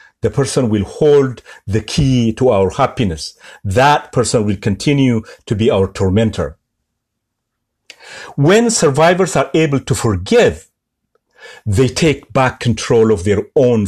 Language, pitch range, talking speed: Amharic, 105-145 Hz, 130 wpm